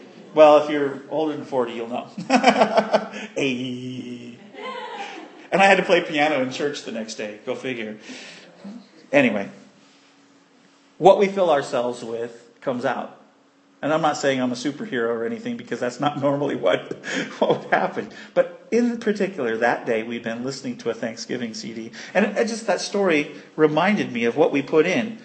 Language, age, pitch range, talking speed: English, 40-59, 150-240 Hz, 170 wpm